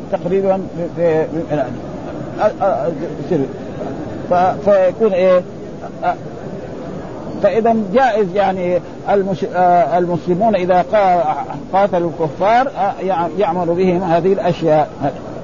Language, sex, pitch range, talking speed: Arabic, male, 180-220 Hz, 60 wpm